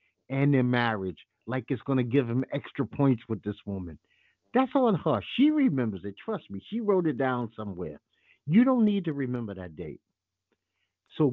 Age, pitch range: 50-69, 115-185 Hz